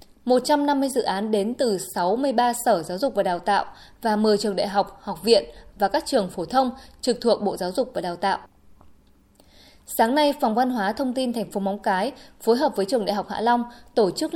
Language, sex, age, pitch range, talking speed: Vietnamese, female, 20-39, 200-260 Hz, 220 wpm